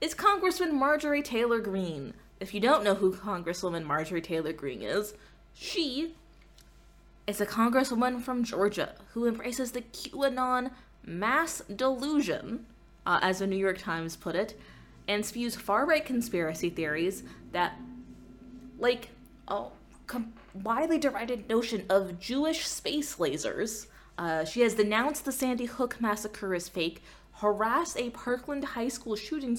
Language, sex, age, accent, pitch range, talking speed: English, female, 20-39, American, 200-290 Hz, 140 wpm